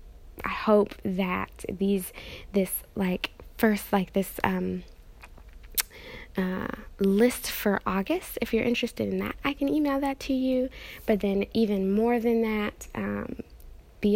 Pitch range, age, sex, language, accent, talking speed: 180-225 Hz, 10-29, female, English, American, 140 wpm